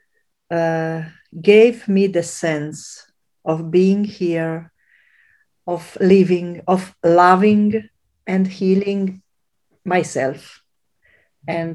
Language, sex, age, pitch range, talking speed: Italian, female, 50-69, 160-210 Hz, 80 wpm